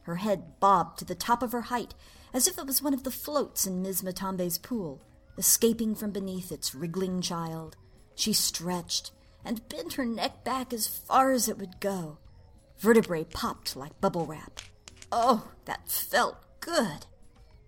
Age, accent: 50-69, American